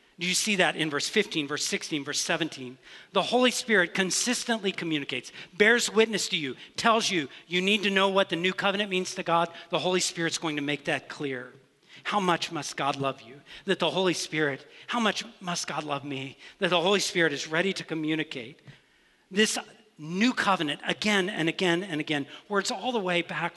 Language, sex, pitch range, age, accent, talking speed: English, male, 150-190 Hz, 50-69, American, 200 wpm